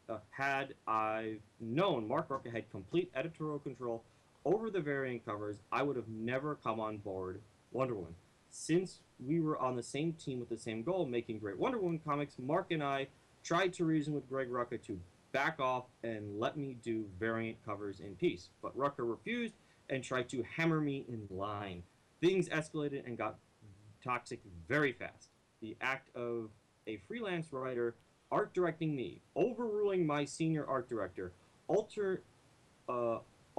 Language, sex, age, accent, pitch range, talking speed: English, male, 30-49, American, 110-145 Hz, 160 wpm